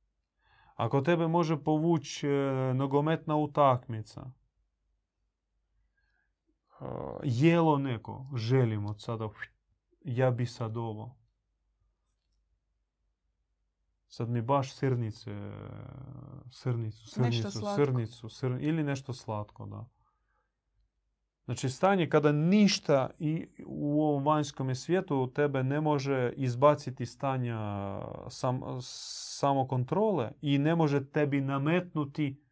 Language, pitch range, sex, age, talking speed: Croatian, 115-145 Hz, male, 30-49, 85 wpm